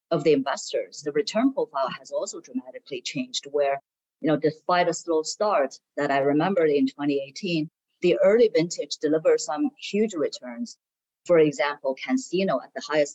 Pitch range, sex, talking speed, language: 145-210 Hz, female, 160 wpm, English